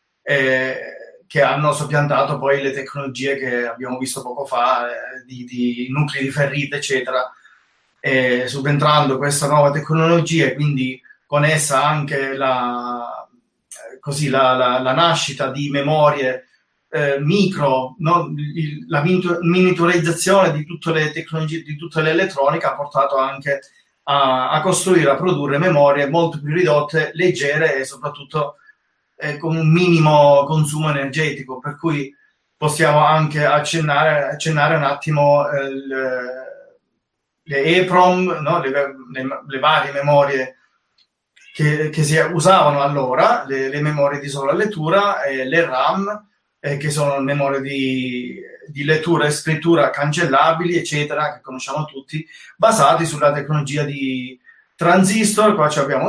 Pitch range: 135-165 Hz